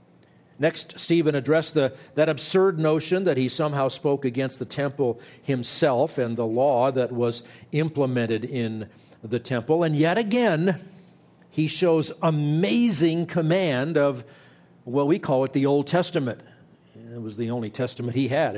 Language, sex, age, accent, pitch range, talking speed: English, male, 50-69, American, 125-165 Hz, 150 wpm